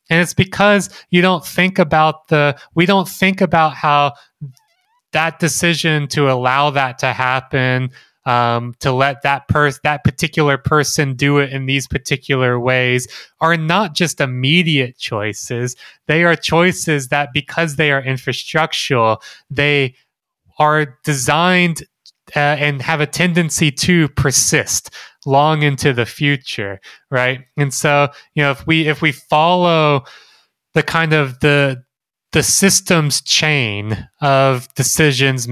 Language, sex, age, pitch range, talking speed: English, male, 20-39, 125-155 Hz, 135 wpm